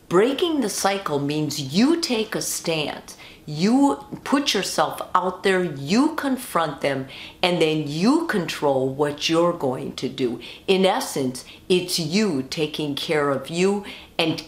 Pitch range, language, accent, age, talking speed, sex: 155-215 Hz, English, American, 50-69, 140 wpm, female